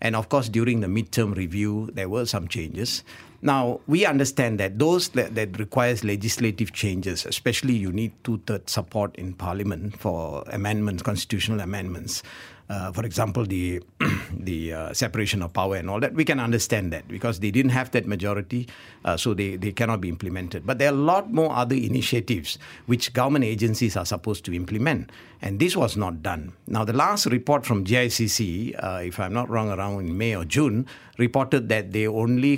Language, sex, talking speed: English, male, 185 wpm